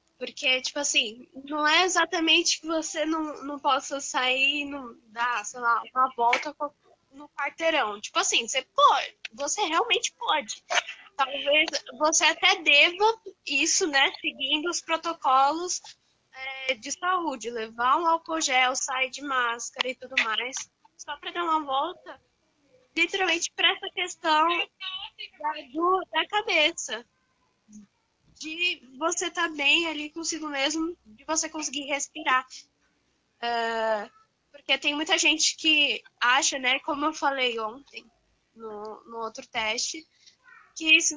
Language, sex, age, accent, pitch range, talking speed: Portuguese, female, 10-29, Brazilian, 260-330 Hz, 135 wpm